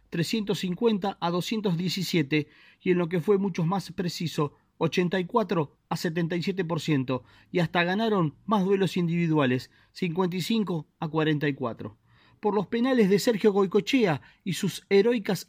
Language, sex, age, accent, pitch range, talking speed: Spanish, male, 40-59, Argentinian, 150-195 Hz, 130 wpm